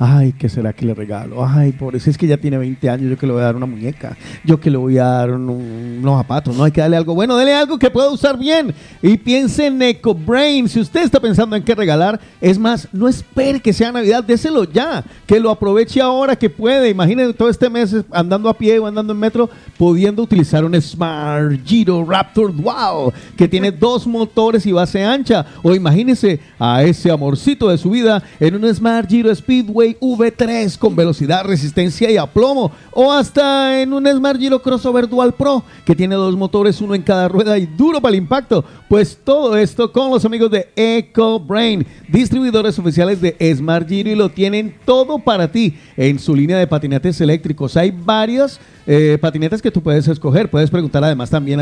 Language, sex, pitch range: Spanish, male, 155-230 Hz